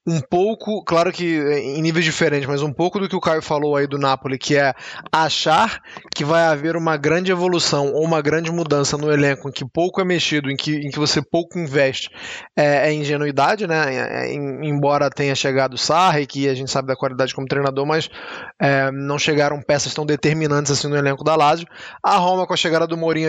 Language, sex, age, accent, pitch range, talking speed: Portuguese, male, 20-39, Brazilian, 140-180 Hz, 200 wpm